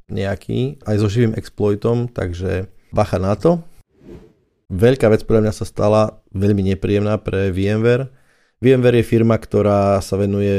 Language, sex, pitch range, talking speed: Slovak, male, 100-115 Hz, 140 wpm